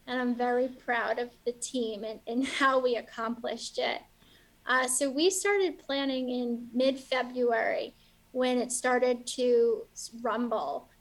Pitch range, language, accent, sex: 230-260 Hz, English, American, female